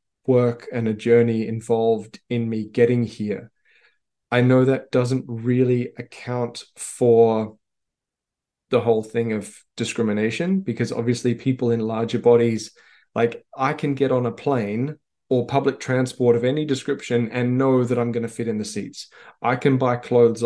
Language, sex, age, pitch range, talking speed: English, male, 20-39, 110-125 Hz, 160 wpm